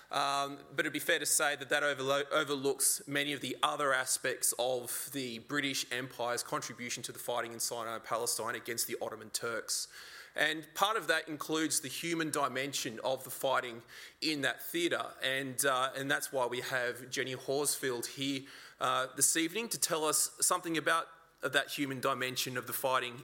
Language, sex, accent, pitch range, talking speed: English, male, Australian, 130-160 Hz, 180 wpm